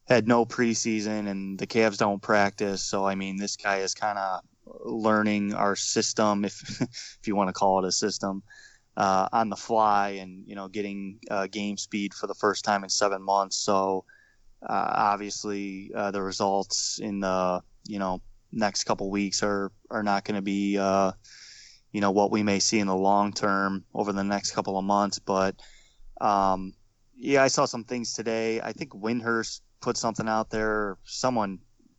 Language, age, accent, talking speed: English, 20-39, American, 185 wpm